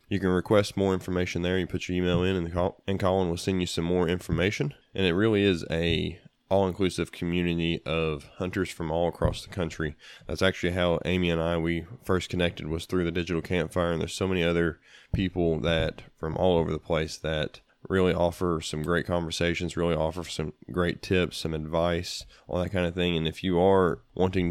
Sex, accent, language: male, American, English